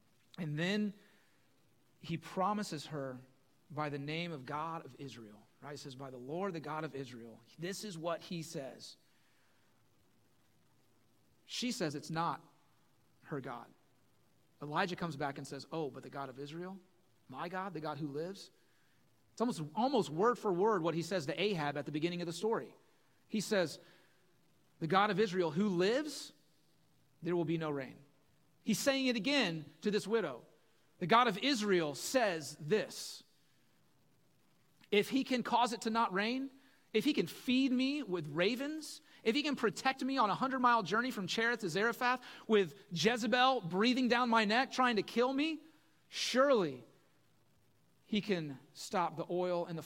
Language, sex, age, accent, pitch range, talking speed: English, male, 30-49, American, 145-220 Hz, 170 wpm